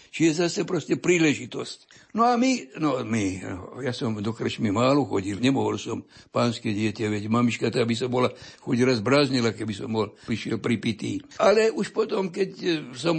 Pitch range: 120-150 Hz